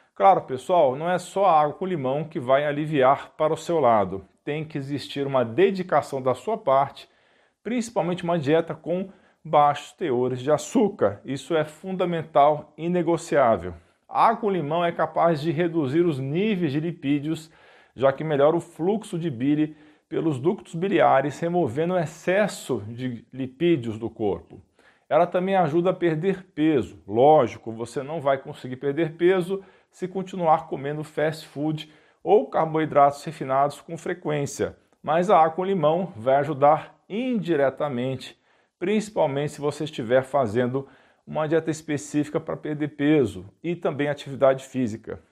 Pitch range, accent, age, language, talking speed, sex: 140-175 Hz, Brazilian, 50-69, Portuguese, 150 wpm, male